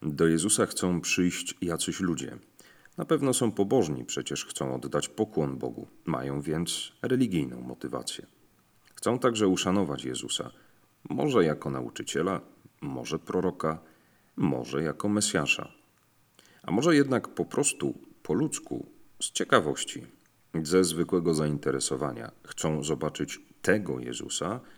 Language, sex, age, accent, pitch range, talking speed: Polish, male, 40-59, native, 75-105 Hz, 115 wpm